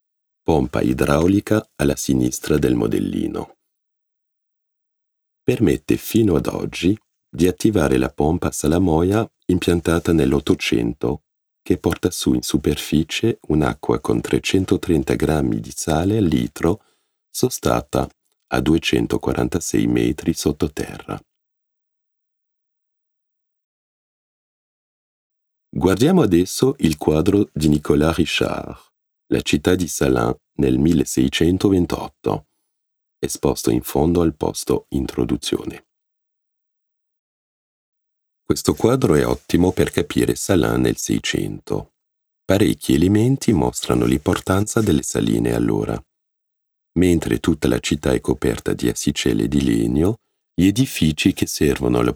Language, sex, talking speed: Italian, male, 100 wpm